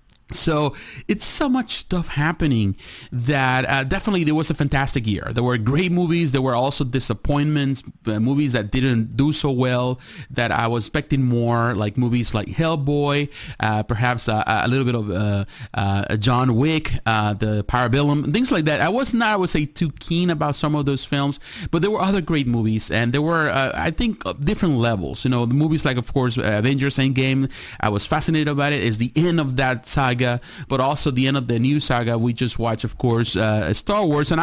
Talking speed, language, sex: 210 wpm, English, male